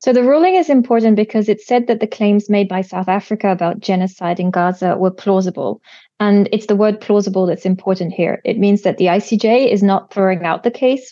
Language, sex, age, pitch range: English, female, 30-49, 190-240 Hz